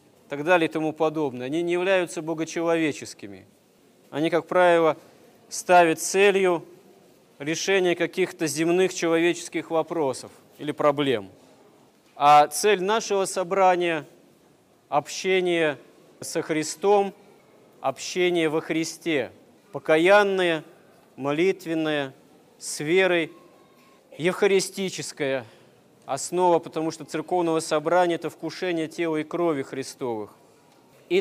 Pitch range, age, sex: 155-180 Hz, 40-59, male